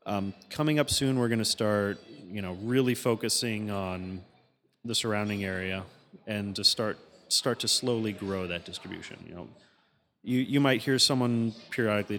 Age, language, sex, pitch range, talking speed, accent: 30-49, English, male, 100-120 Hz, 160 wpm, American